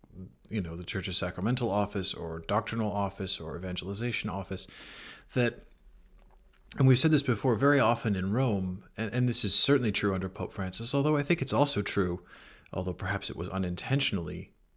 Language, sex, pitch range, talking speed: English, male, 95-120 Hz, 175 wpm